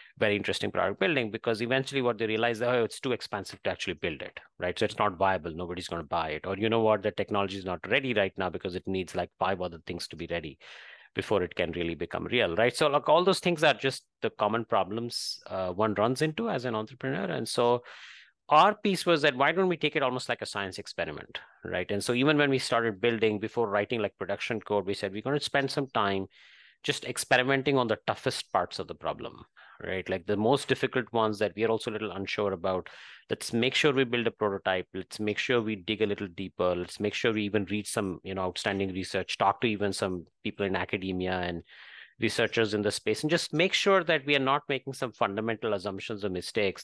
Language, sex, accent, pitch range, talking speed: English, male, Indian, 95-125 Hz, 235 wpm